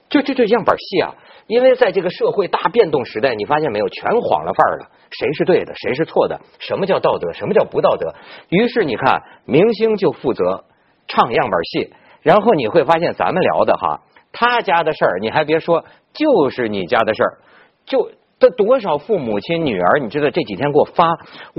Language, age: Chinese, 50-69